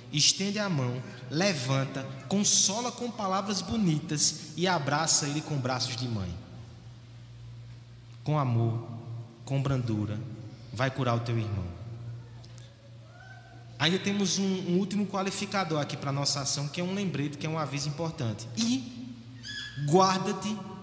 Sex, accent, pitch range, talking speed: male, Brazilian, 120-160 Hz, 135 wpm